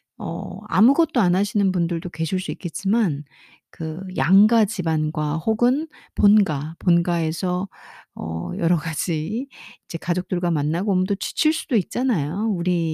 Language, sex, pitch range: Korean, female, 165-215 Hz